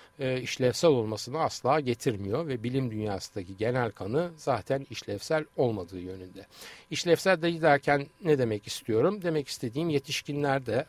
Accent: native